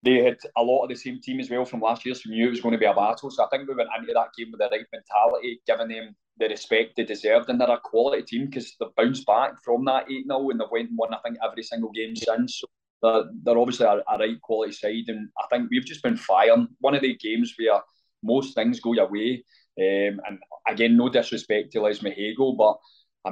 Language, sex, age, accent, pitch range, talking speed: English, male, 20-39, British, 105-135 Hz, 255 wpm